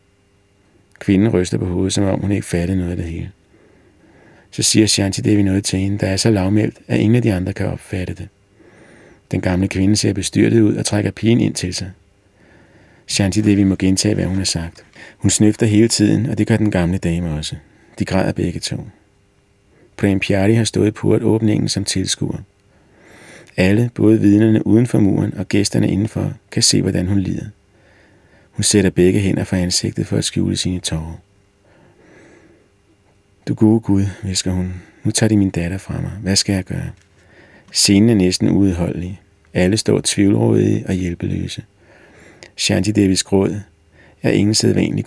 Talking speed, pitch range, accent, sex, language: 170 wpm, 95-105 Hz, native, male, Danish